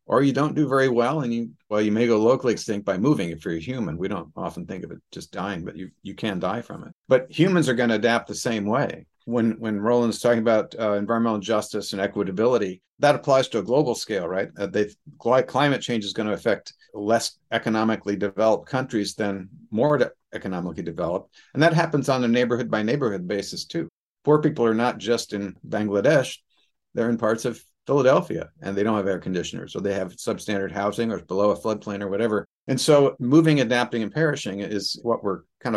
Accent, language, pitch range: American, English, 105-125 Hz